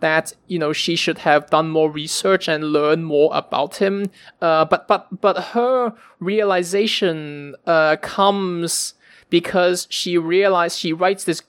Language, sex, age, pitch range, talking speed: English, male, 20-39, 155-195 Hz, 145 wpm